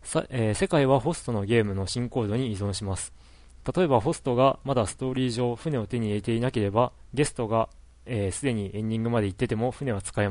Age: 20-39